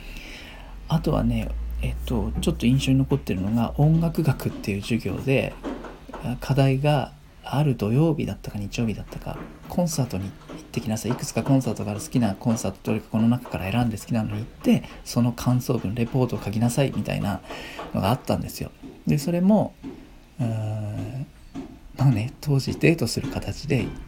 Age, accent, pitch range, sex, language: 40-59, native, 105-150 Hz, male, Japanese